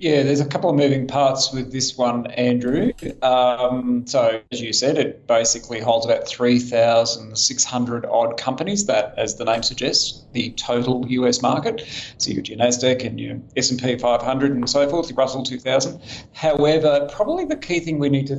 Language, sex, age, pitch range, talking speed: English, male, 40-59, 125-140 Hz, 175 wpm